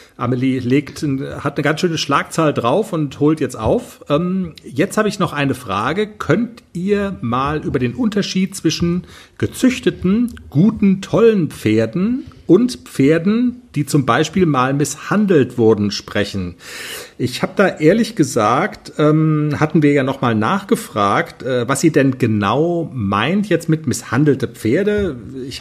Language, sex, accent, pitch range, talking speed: German, male, German, 130-195 Hz, 135 wpm